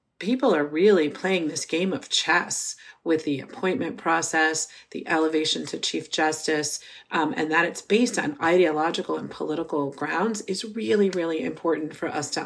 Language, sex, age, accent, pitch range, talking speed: English, female, 40-59, American, 155-195 Hz, 165 wpm